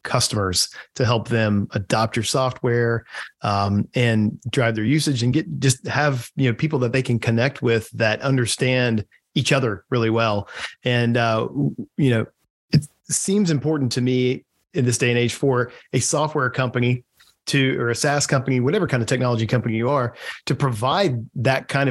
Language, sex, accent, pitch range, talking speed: English, male, American, 115-135 Hz, 175 wpm